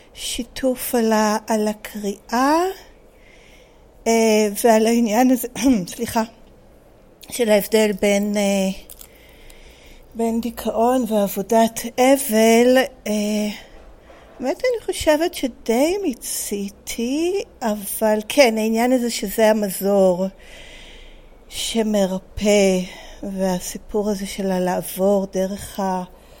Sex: female